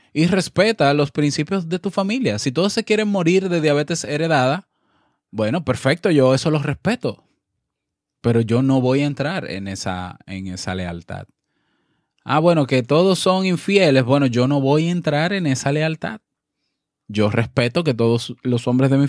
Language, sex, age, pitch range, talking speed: Spanish, male, 20-39, 120-165 Hz, 175 wpm